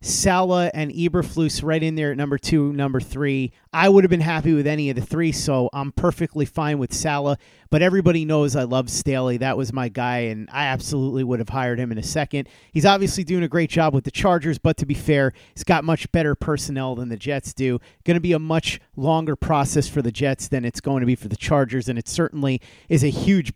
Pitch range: 130-170 Hz